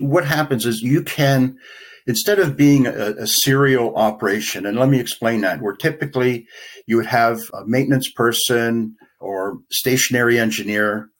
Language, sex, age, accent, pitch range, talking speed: English, male, 60-79, American, 110-135 Hz, 150 wpm